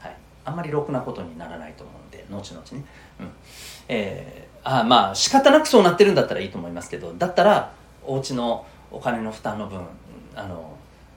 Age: 40-59